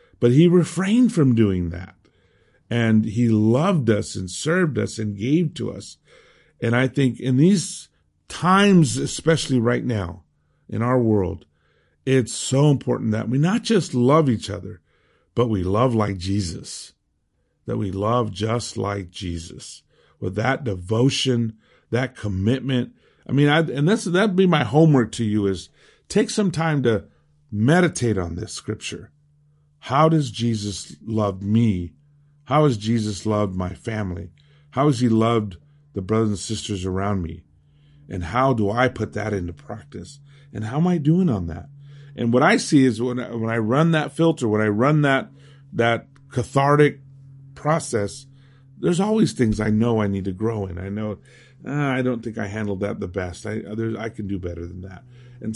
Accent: American